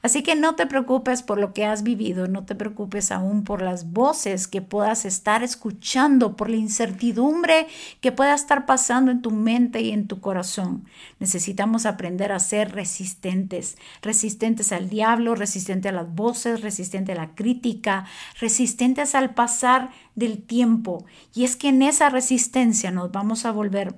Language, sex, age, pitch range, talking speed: Spanish, female, 50-69, 200-255 Hz, 165 wpm